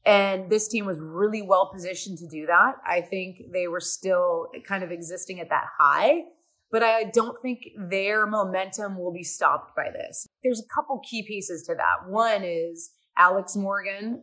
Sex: female